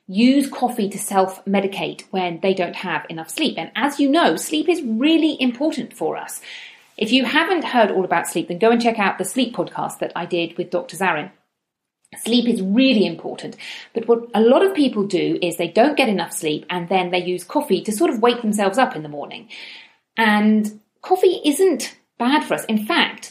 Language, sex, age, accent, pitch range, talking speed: English, female, 40-59, British, 180-250 Hz, 205 wpm